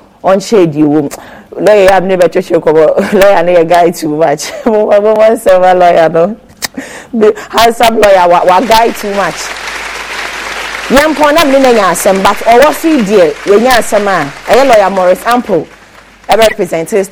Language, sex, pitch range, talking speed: English, female, 160-220 Hz, 100 wpm